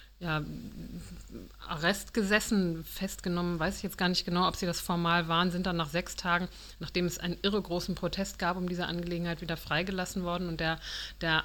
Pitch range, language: 160-180 Hz, German